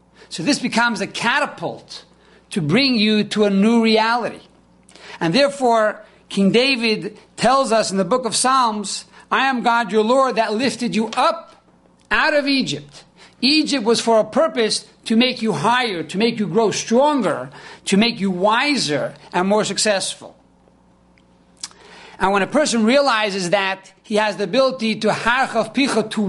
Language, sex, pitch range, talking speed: English, male, 200-245 Hz, 160 wpm